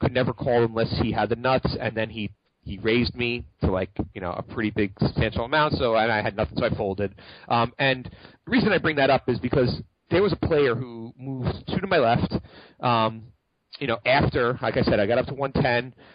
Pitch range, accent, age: 105-125 Hz, American, 30-49